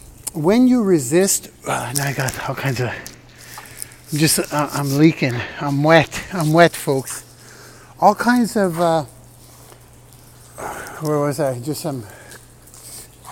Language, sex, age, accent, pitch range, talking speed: English, male, 60-79, American, 160-245 Hz, 135 wpm